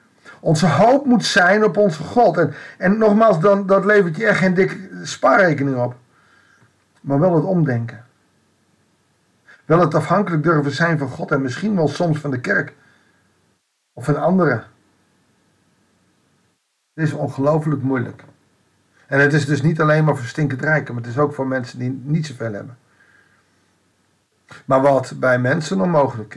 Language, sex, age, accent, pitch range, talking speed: Dutch, male, 50-69, Dutch, 130-180 Hz, 155 wpm